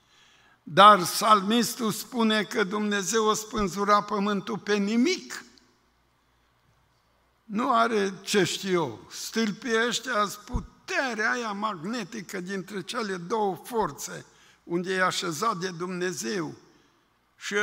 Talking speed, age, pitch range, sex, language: 100 wpm, 60-79, 185-225 Hz, male, Romanian